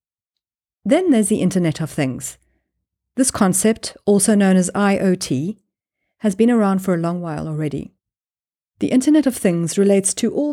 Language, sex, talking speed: English, female, 155 wpm